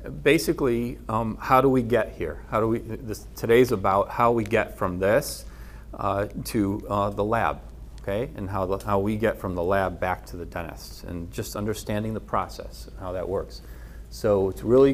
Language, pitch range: English, 95-120 Hz